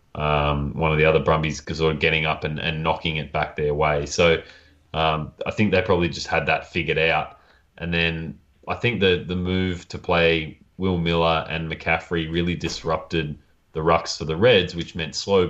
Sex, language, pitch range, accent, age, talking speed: male, English, 80-85 Hz, Australian, 20-39, 200 wpm